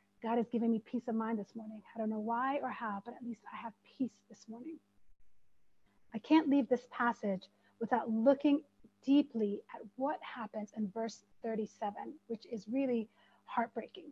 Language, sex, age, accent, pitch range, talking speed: English, female, 30-49, American, 220-275 Hz, 175 wpm